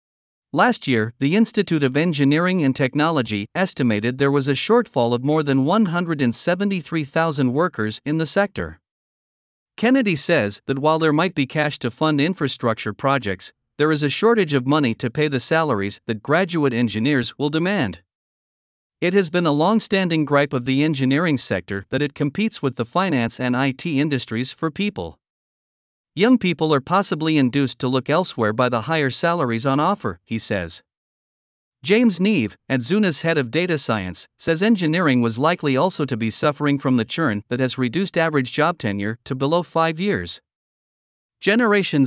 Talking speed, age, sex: 165 wpm, 50-69, male